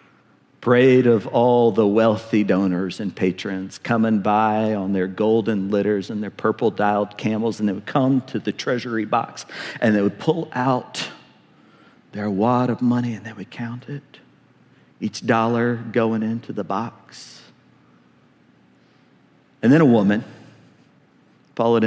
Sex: male